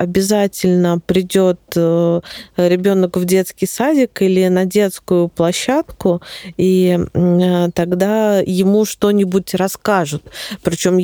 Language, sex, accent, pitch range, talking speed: Russian, female, native, 175-195 Hz, 85 wpm